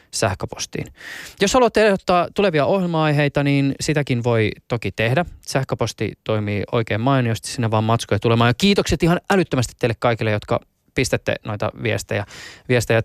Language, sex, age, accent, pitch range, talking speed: Finnish, male, 20-39, native, 110-145 Hz, 140 wpm